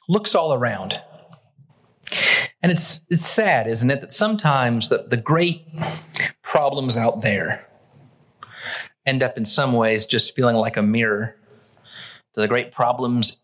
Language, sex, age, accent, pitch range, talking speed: English, male, 40-59, American, 135-200 Hz, 140 wpm